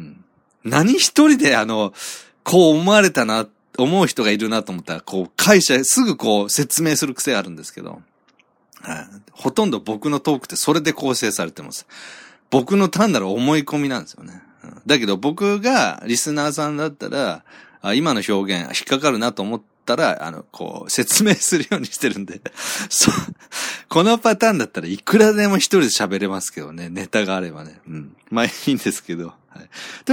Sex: male